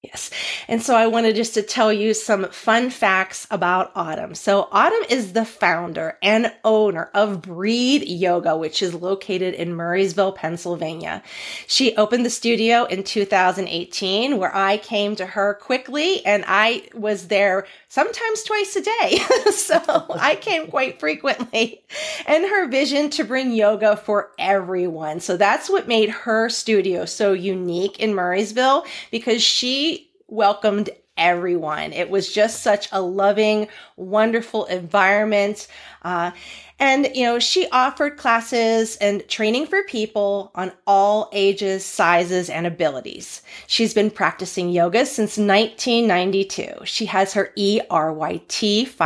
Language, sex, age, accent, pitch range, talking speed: English, female, 30-49, American, 185-230 Hz, 135 wpm